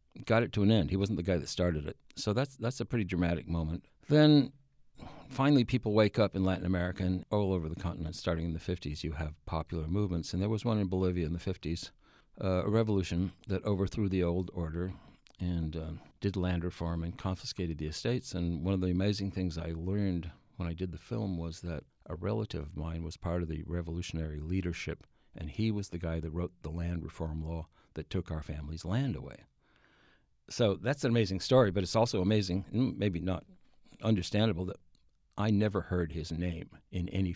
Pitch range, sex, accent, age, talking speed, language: 85-105 Hz, male, American, 60-79, 205 wpm, English